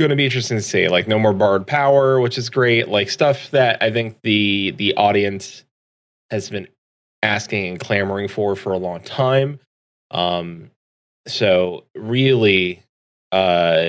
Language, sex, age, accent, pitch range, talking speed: English, male, 20-39, American, 95-130 Hz, 160 wpm